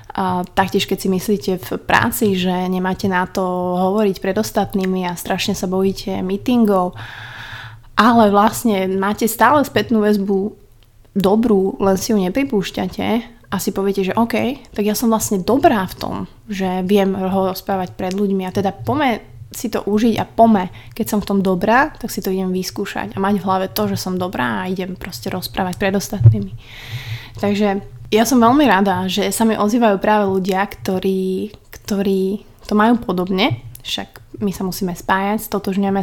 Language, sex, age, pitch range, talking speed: Slovak, female, 20-39, 185-210 Hz, 170 wpm